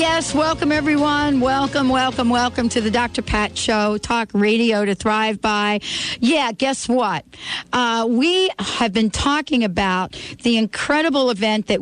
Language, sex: English, female